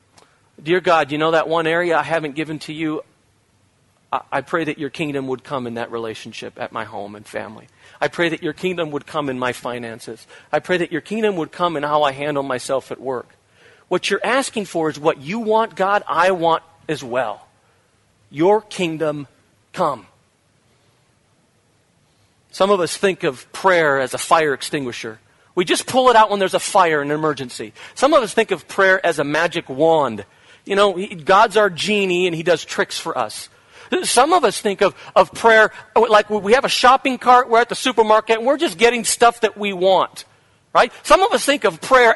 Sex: male